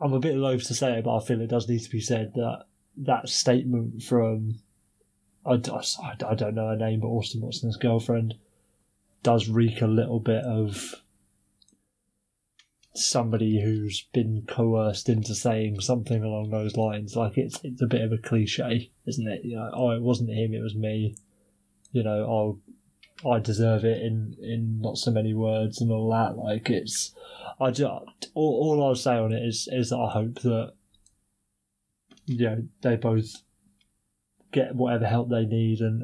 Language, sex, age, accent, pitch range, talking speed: English, male, 20-39, British, 110-120 Hz, 175 wpm